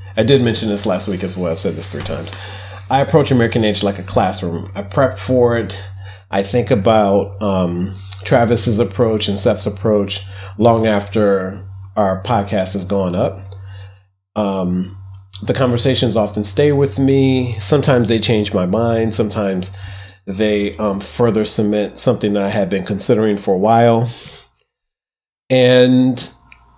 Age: 30-49